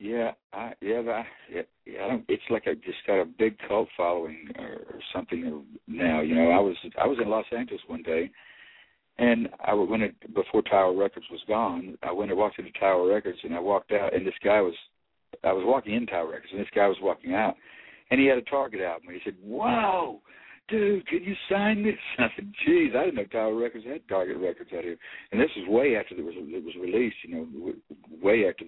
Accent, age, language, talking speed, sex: American, 60-79, English, 230 wpm, male